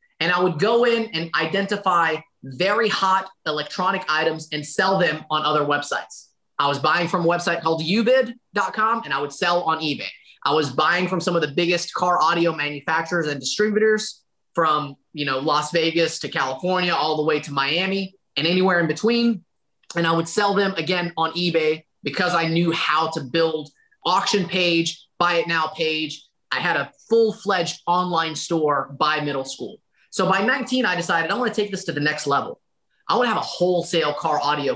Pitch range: 155-195 Hz